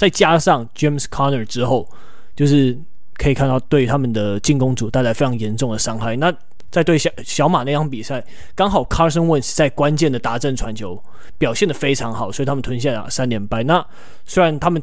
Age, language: 20-39, Chinese